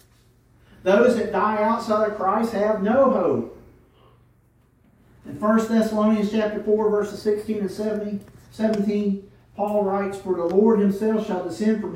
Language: English